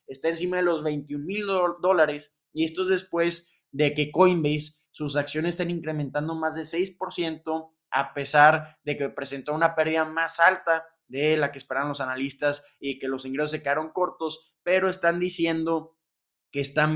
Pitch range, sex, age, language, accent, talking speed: 135-155 Hz, male, 20-39, Spanish, Mexican, 170 wpm